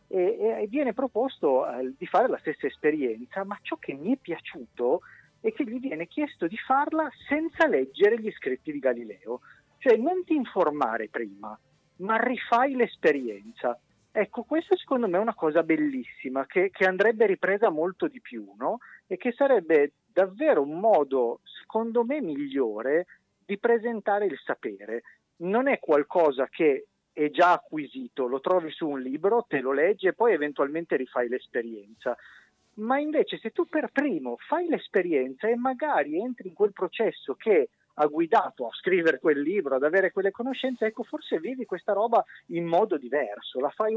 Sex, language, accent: male, Italian, native